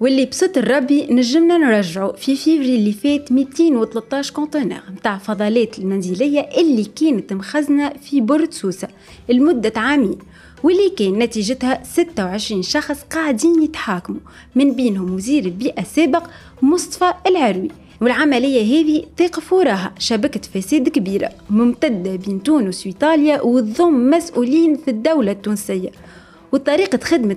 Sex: female